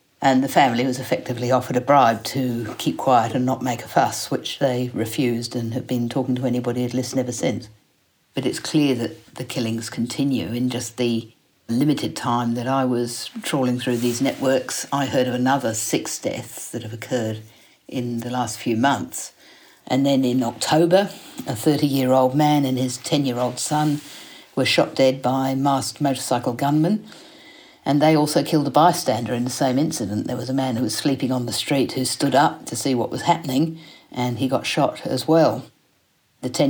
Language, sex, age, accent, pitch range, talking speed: English, female, 50-69, British, 120-140 Hz, 190 wpm